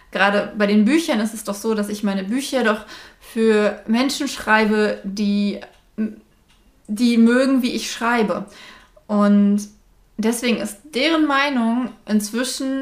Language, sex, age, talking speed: German, female, 20-39, 130 wpm